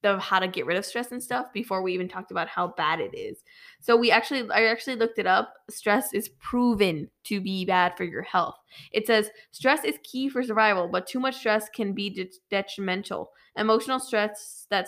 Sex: female